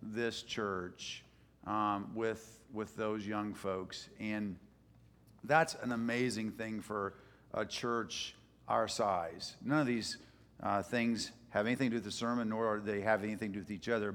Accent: American